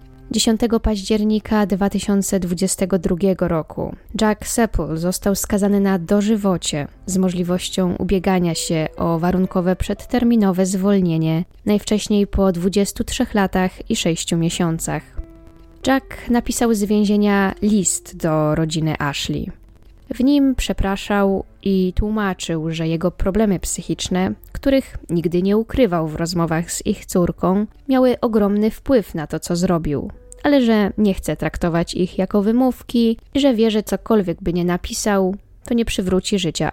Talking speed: 125 wpm